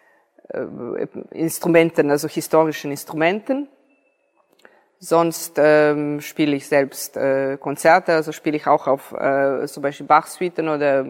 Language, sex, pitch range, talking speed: German, female, 140-175 Hz, 115 wpm